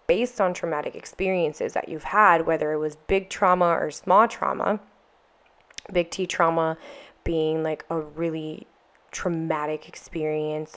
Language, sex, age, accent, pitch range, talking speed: English, female, 20-39, American, 155-185 Hz, 135 wpm